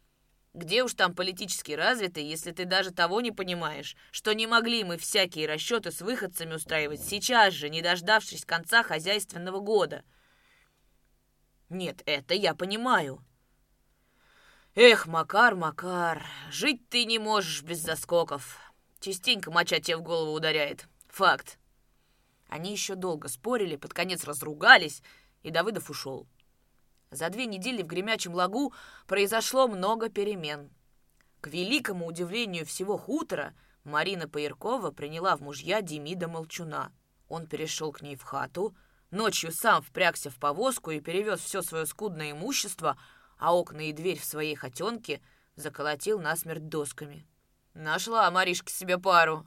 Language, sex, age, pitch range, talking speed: Russian, female, 20-39, 155-200 Hz, 130 wpm